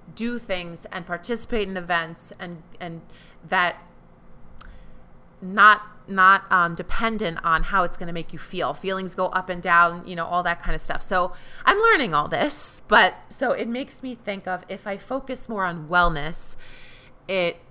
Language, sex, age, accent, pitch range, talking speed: English, female, 30-49, American, 165-195 Hz, 175 wpm